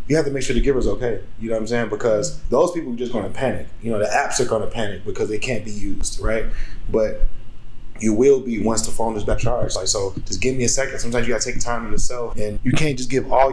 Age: 20-39